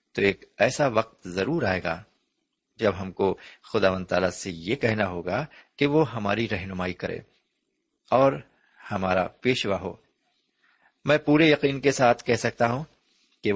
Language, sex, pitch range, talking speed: Urdu, male, 95-140 Hz, 150 wpm